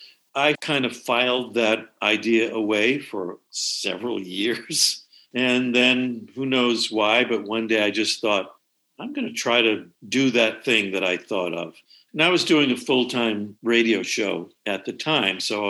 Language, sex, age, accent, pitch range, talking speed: English, male, 50-69, American, 105-125 Hz, 170 wpm